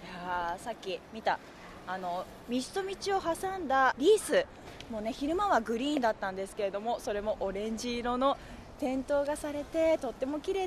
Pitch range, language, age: 235-325 Hz, Japanese, 20-39